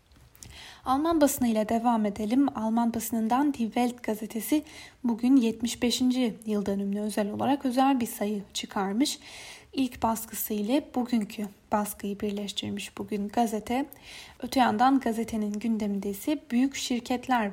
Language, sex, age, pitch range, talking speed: Turkish, female, 10-29, 215-265 Hz, 115 wpm